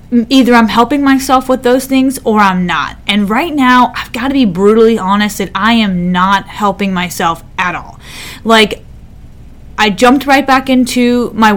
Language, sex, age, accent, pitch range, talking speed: English, female, 20-39, American, 195-225 Hz, 175 wpm